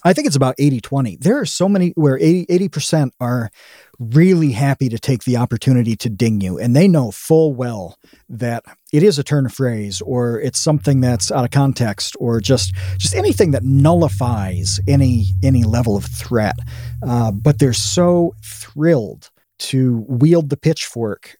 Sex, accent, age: male, American, 40-59